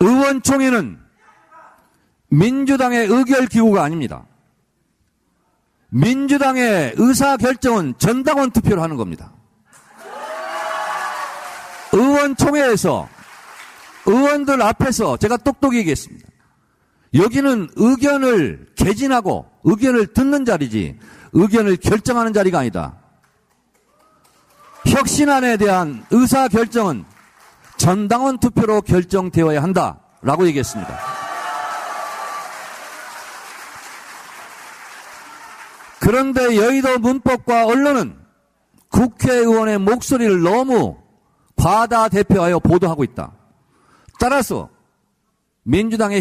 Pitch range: 185-260 Hz